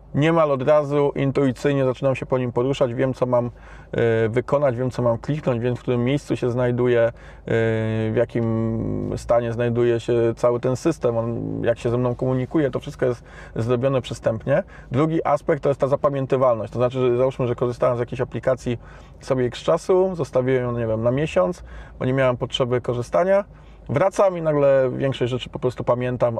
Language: Polish